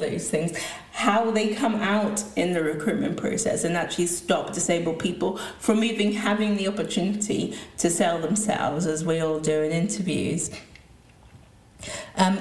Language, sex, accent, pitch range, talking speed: English, female, British, 165-210 Hz, 145 wpm